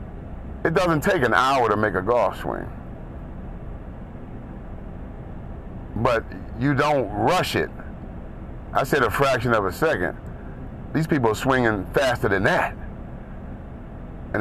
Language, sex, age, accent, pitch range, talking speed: English, male, 40-59, American, 95-130 Hz, 125 wpm